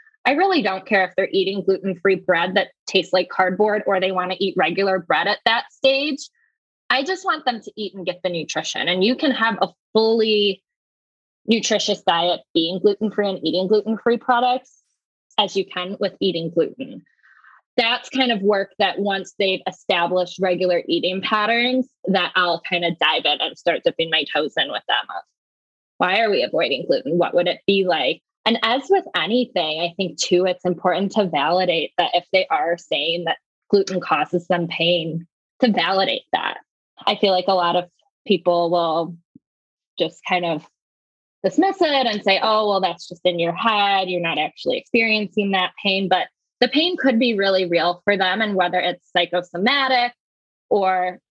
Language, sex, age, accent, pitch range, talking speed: English, female, 10-29, American, 180-220 Hz, 180 wpm